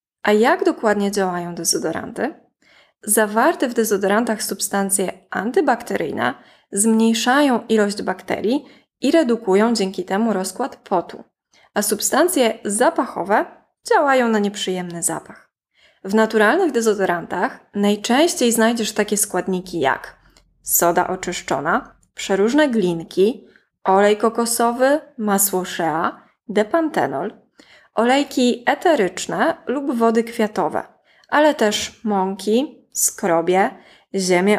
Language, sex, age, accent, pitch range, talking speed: Polish, female, 20-39, native, 200-260 Hz, 90 wpm